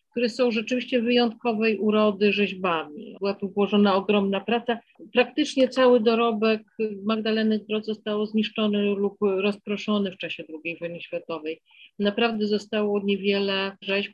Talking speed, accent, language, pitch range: 125 wpm, native, Polish, 185-225 Hz